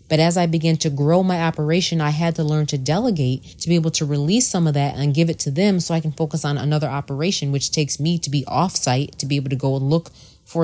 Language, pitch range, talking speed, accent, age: English, 140-175 Hz, 275 wpm, American, 30-49